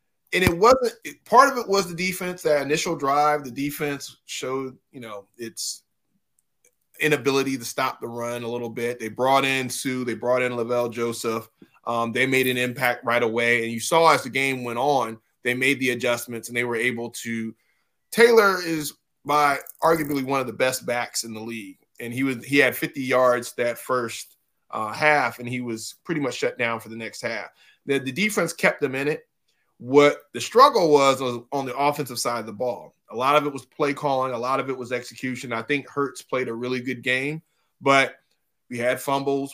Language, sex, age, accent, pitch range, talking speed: English, male, 20-39, American, 120-135 Hz, 210 wpm